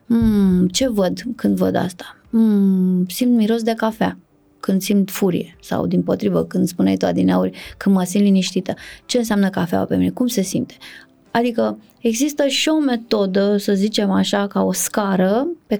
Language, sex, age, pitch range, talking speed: Romanian, female, 20-39, 190-245 Hz, 175 wpm